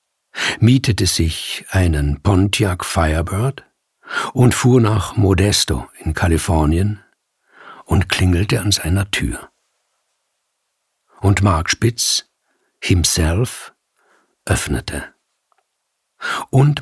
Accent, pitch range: German, 95-115 Hz